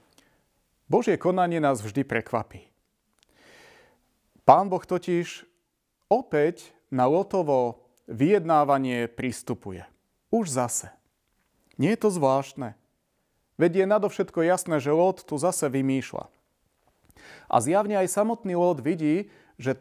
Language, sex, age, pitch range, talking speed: Slovak, male, 40-59, 130-185 Hz, 105 wpm